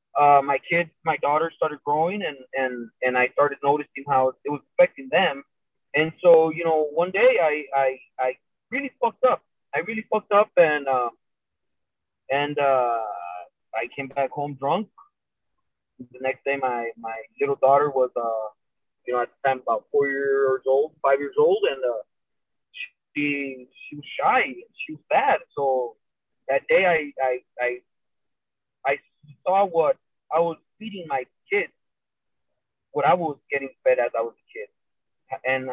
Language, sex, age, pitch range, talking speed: English, male, 30-49, 130-190 Hz, 165 wpm